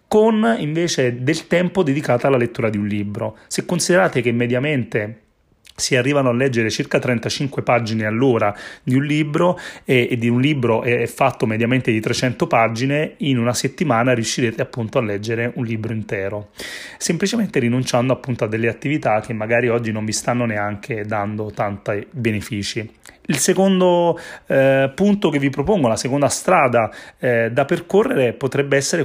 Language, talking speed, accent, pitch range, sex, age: Italian, 155 wpm, native, 115-155 Hz, male, 30-49